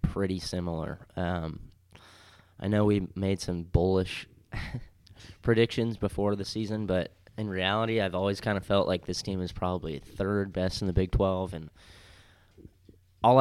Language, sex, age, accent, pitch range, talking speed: English, male, 20-39, American, 90-105 Hz, 150 wpm